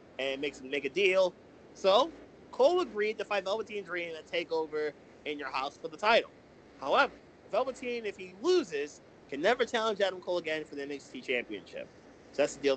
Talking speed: 195 wpm